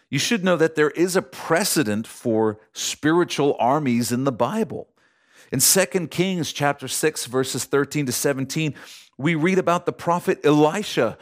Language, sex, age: English, male, 50-69